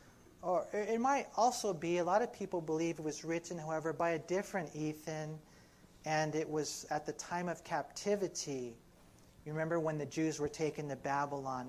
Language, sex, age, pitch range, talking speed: English, male, 40-59, 155-195 Hz, 175 wpm